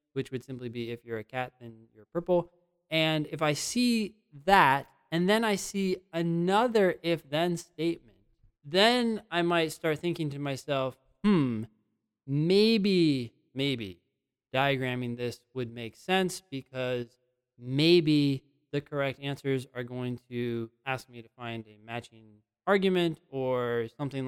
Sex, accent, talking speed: male, American, 140 wpm